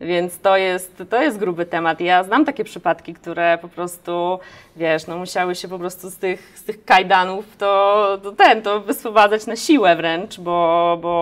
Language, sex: Polish, female